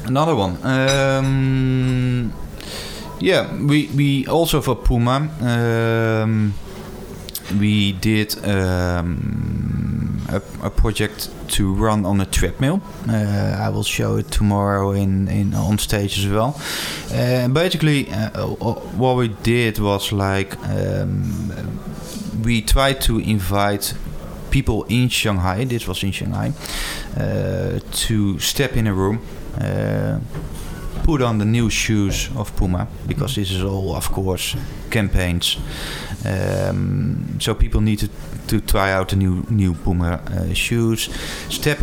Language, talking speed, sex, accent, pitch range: Ukrainian, 130 wpm, male, Dutch, 95-115 Hz